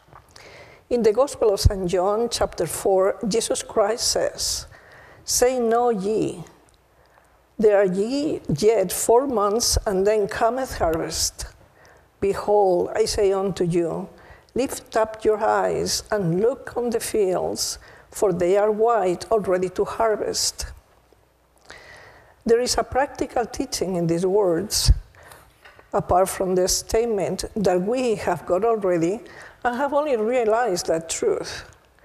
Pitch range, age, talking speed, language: 190-240 Hz, 50-69, 125 wpm, English